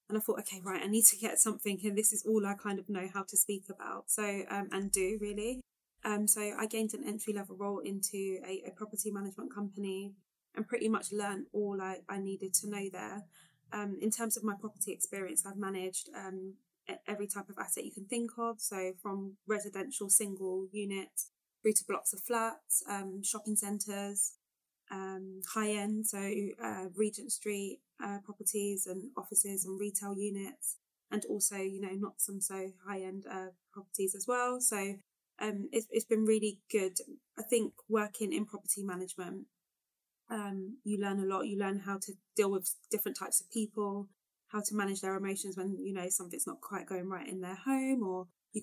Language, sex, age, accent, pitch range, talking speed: English, female, 20-39, British, 190-210 Hz, 190 wpm